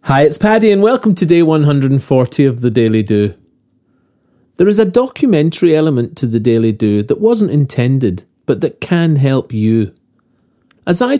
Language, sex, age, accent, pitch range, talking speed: English, male, 40-59, British, 120-175 Hz, 165 wpm